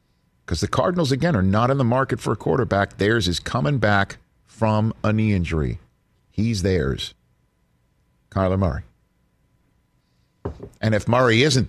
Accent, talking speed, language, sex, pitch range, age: American, 145 wpm, English, male, 75-105 Hz, 50-69